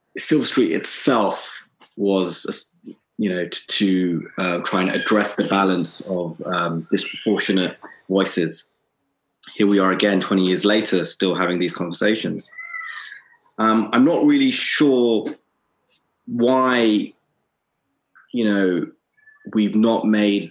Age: 30-49